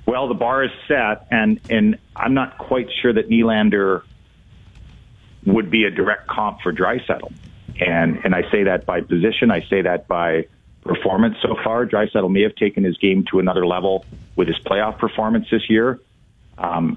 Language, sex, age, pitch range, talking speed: English, male, 50-69, 95-115 Hz, 180 wpm